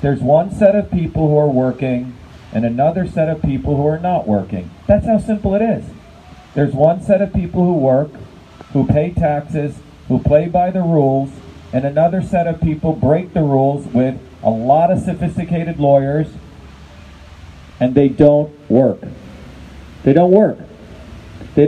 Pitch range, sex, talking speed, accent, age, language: 135-175 Hz, male, 165 wpm, American, 40-59, English